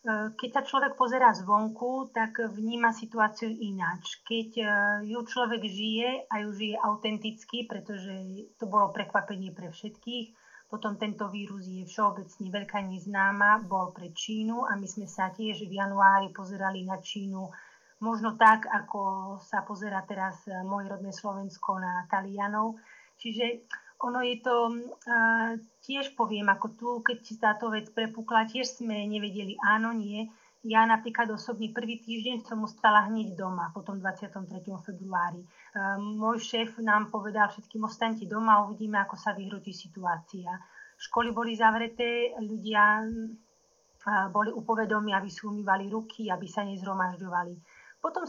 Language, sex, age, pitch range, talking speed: Slovak, female, 30-49, 200-230 Hz, 140 wpm